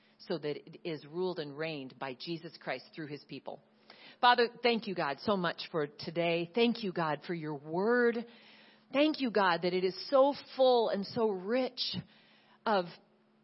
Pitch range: 195-255 Hz